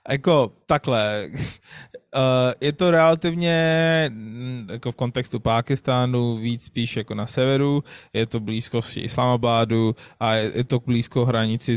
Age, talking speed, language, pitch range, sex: 20-39, 130 wpm, Czech, 120-140 Hz, male